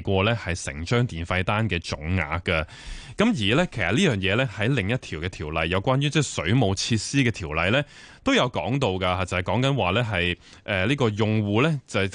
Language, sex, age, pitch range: Chinese, male, 20-39, 95-130 Hz